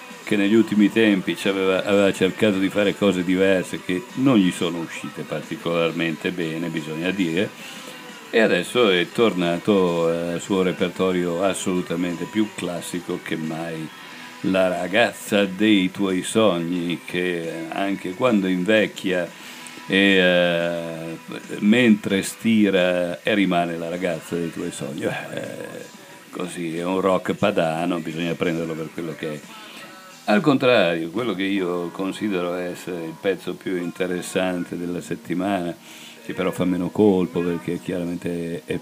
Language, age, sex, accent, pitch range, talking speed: Italian, 50-69, male, native, 80-95 Hz, 130 wpm